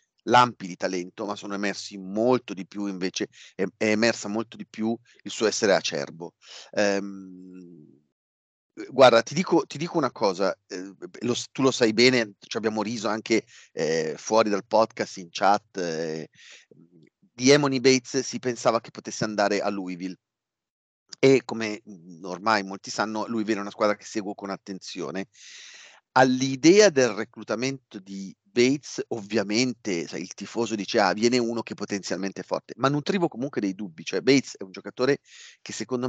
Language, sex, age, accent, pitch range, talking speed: Italian, male, 40-59, native, 100-125 Hz, 160 wpm